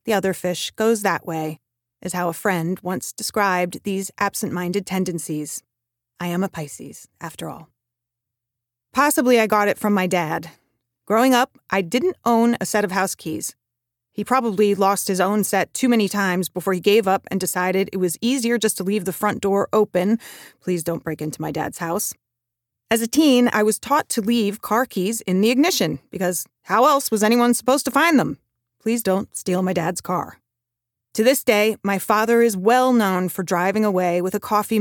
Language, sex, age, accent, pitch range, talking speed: English, female, 30-49, American, 170-215 Hz, 195 wpm